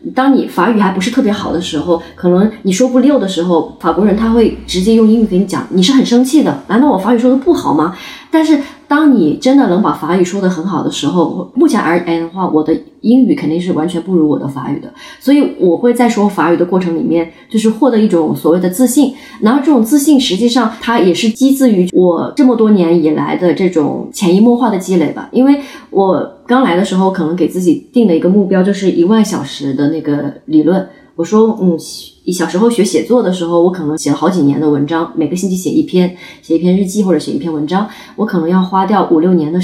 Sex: female